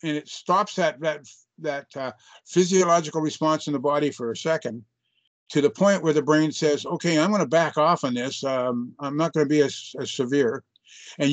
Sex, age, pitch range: male, 60-79, 140-175 Hz